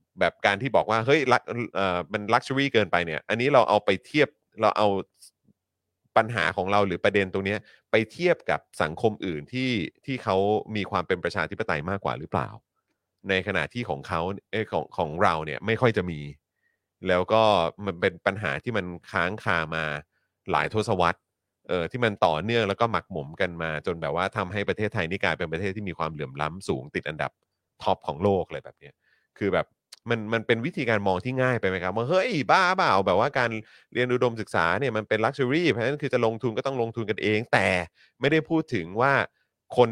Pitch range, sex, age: 90-115 Hz, male, 30-49